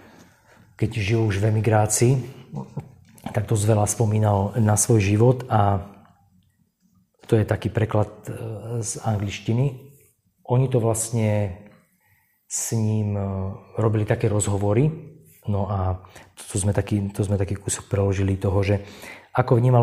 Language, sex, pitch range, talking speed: Slovak, male, 105-125 Hz, 120 wpm